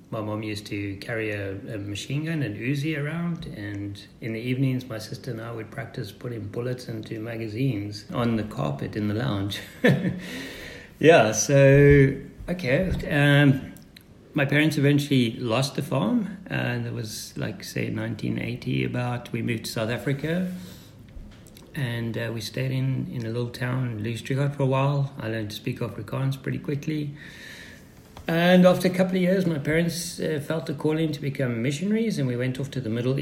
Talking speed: 175 wpm